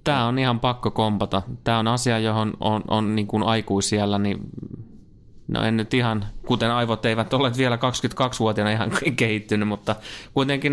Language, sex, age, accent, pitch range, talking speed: Finnish, male, 30-49, native, 100-125 Hz, 155 wpm